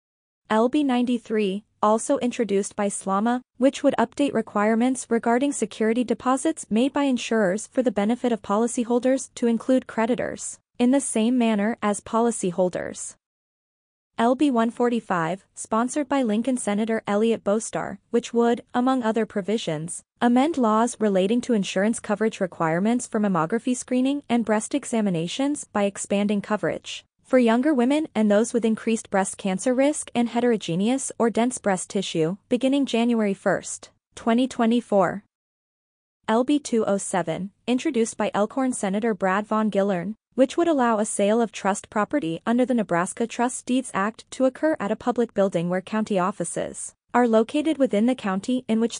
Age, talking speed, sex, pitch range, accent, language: 20-39, 140 wpm, female, 205-250 Hz, American, English